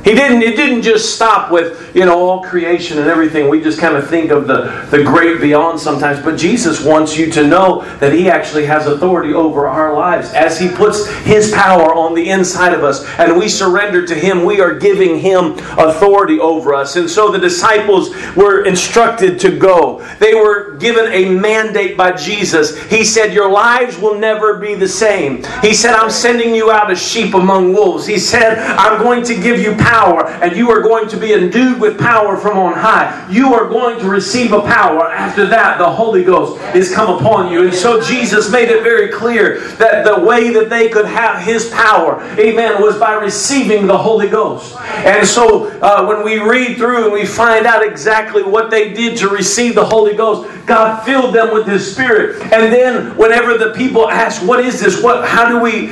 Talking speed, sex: 205 wpm, male